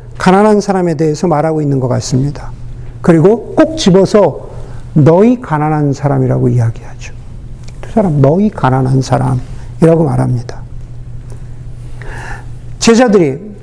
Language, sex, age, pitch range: Korean, male, 50-69, 120-185 Hz